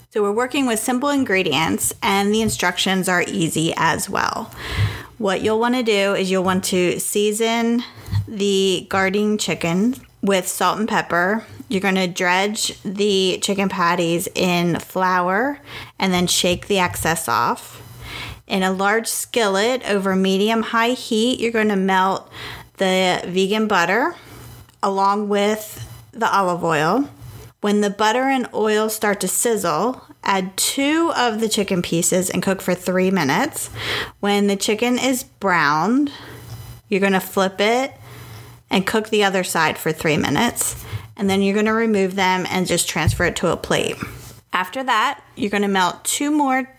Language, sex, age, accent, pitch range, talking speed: English, female, 30-49, American, 180-220 Hz, 155 wpm